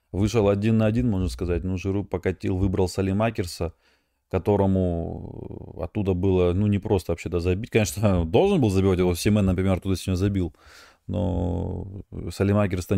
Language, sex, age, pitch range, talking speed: Russian, male, 20-39, 90-105 Hz, 155 wpm